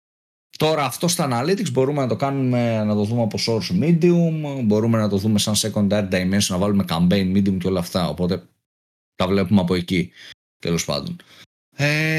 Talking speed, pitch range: 175 wpm, 100-140 Hz